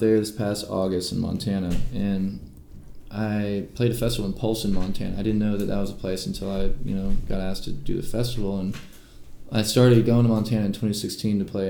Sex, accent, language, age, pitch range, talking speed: male, American, English, 20-39, 95-110 Hz, 220 wpm